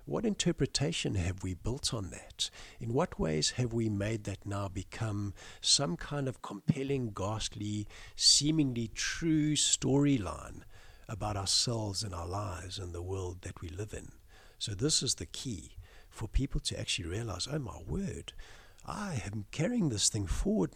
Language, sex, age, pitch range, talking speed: English, male, 60-79, 95-115 Hz, 160 wpm